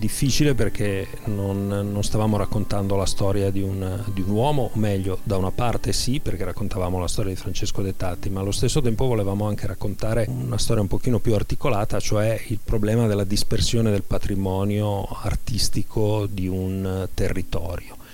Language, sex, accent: Italian, male, native